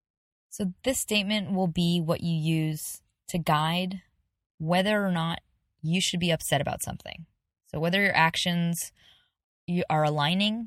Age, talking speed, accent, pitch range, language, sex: 20-39, 140 wpm, American, 145-185 Hz, English, female